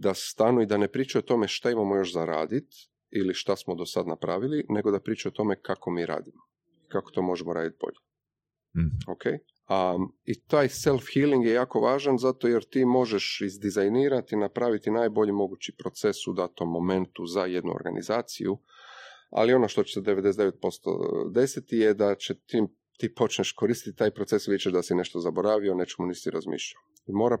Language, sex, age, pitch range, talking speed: Croatian, male, 30-49, 90-115 Hz, 175 wpm